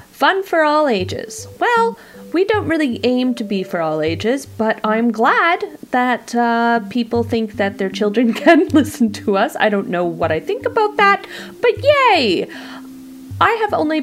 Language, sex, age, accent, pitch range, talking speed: English, female, 30-49, American, 200-300 Hz, 175 wpm